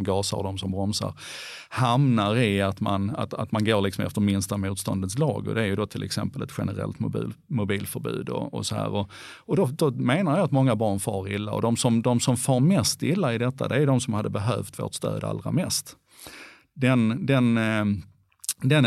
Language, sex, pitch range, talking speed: English, male, 100-125 Hz, 210 wpm